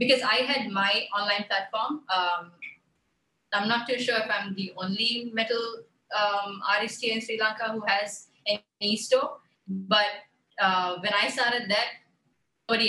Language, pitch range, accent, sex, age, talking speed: English, 195-230 Hz, Indian, female, 20-39, 155 wpm